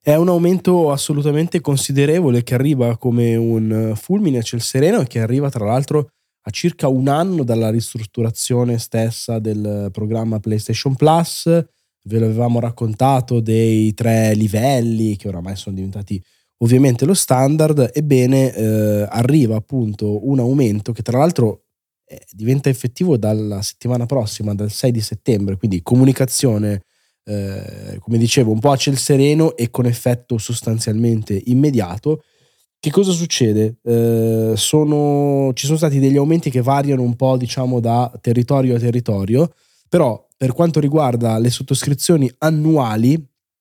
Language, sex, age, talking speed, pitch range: Italian, male, 20-39, 140 wpm, 110-140 Hz